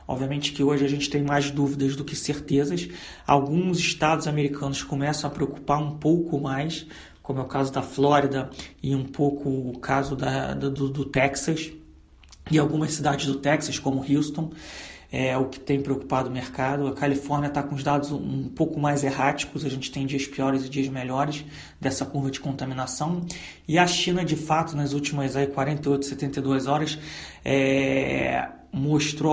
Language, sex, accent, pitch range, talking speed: Portuguese, male, Brazilian, 135-150 Hz, 170 wpm